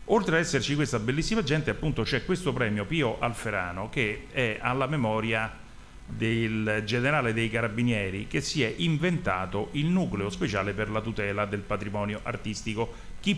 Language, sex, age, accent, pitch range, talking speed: Italian, male, 40-59, native, 105-125 Hz, 155 wpm